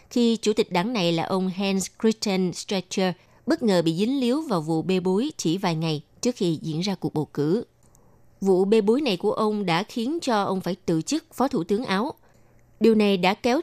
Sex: female